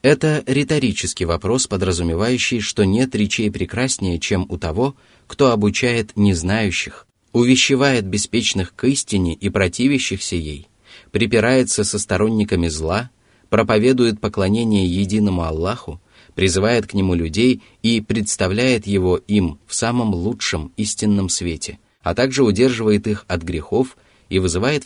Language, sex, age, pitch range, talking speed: Russian, male, 30-49, 90-110 Hz, 120 wpm